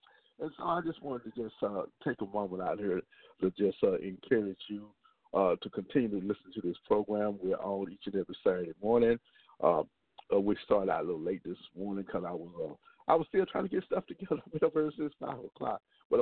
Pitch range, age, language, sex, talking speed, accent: 100-145 Hz, 50-69, English, male, 225 wpm, American